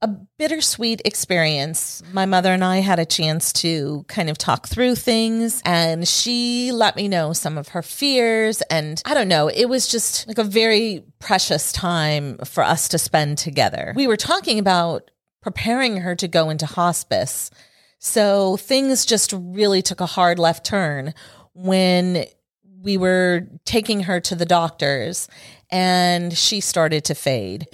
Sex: female